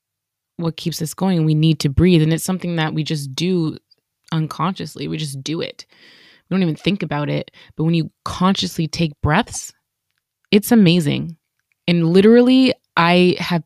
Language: English